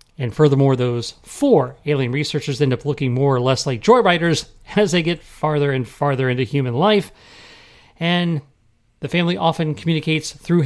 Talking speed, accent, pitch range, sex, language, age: 170 wpm, American, 120-175 Hz, male, English, 40-59